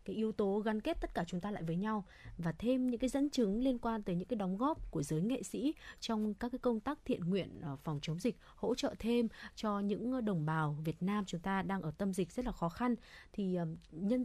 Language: Vietnamese